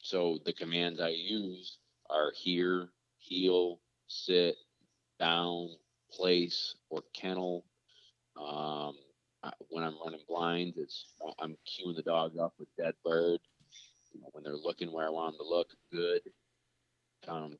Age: 30-49